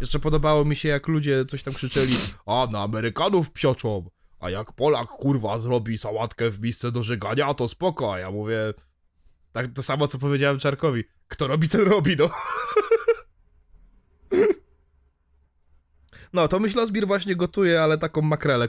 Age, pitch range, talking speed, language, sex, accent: 20-39, 95-145 Hz, 150 wpm, Polish, male, native